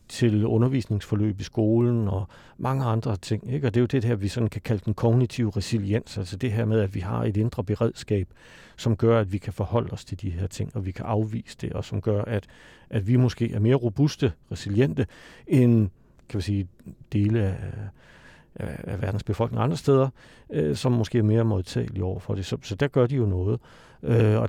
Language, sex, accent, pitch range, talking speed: Danish, male, native, 100-120 Hz, 210 wpm